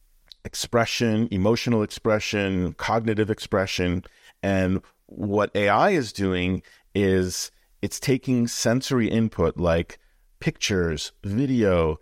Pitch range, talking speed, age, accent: 90-115 Hz, 90 wpm, 40-59, American